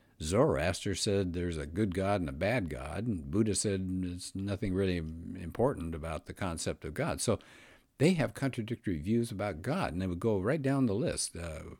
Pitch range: 90-125 Hz